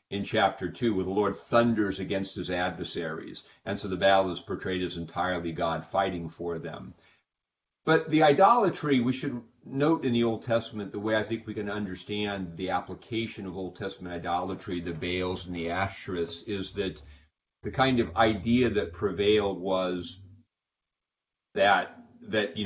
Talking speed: 160 wpm